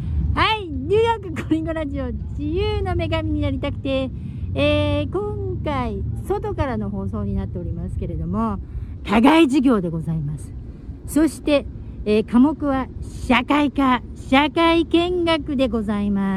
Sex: female